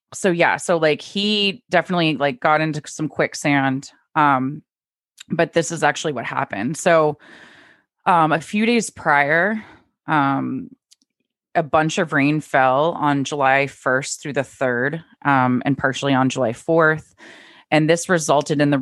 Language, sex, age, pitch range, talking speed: English, female, 20-39, 135-165 Hz, 150 wpm